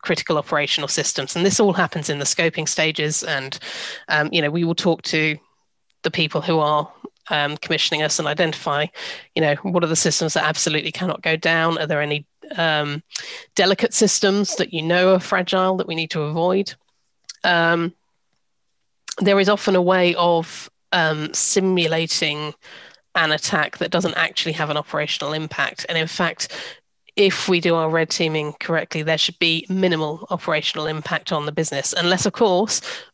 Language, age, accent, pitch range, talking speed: English, 30-49, British, 155-185 Hz, 170 wpm